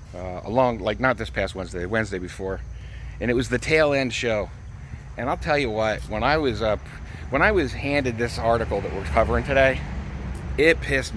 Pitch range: 90-140 Hz